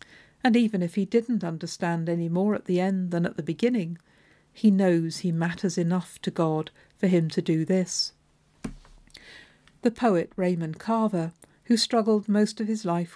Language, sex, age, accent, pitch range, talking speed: English, female, 50-69, British, 165-215 Hz, 170 wpm